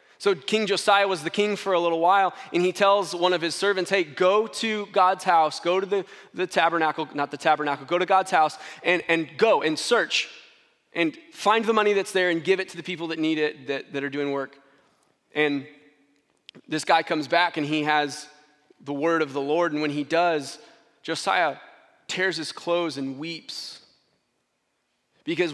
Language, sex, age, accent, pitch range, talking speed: English, male, 20-39, American, 155-190 Hz, 195 wpm